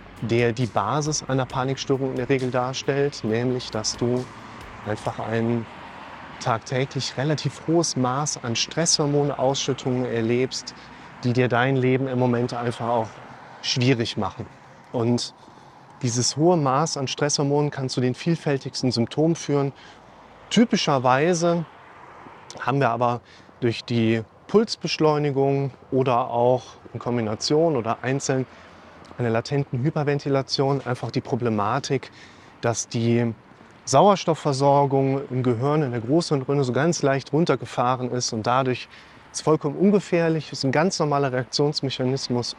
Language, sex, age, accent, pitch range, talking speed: German, male, 30-49, German, 120-145 Hz, 125 wpm